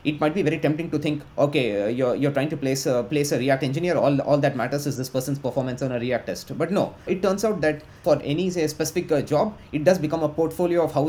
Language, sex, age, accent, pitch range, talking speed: English, male, 30-49, Indian, 130-155 Hz, 265 wpm